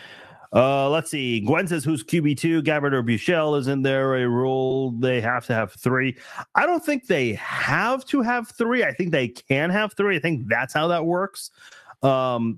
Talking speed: 190 wpm